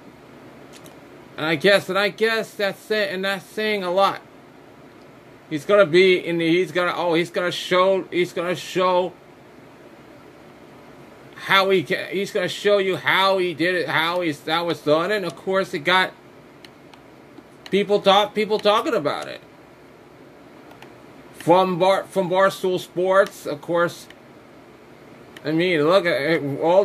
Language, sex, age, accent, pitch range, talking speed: English, male, 30-49, American, 170-215 Hz, 145 wpm